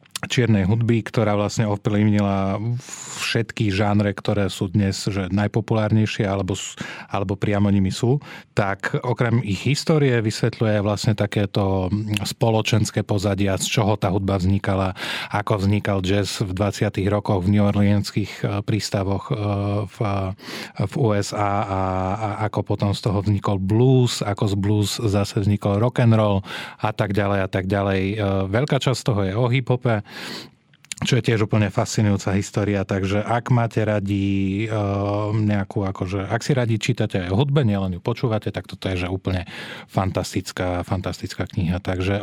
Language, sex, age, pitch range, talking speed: Slovak, male, 30-49, 100-115 Hz, 140 wpm